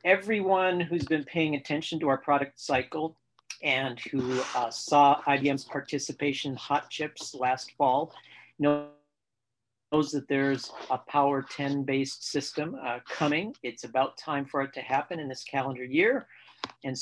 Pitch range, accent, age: 125-150 Hz, American, 50-69